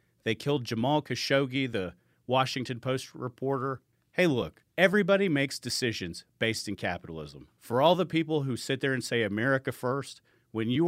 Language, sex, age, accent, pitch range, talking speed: English, male, 40-59, American, 115-150 Hz, 160 wpm